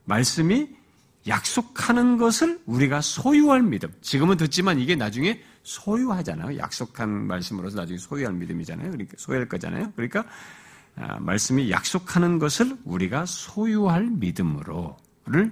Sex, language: male, Korean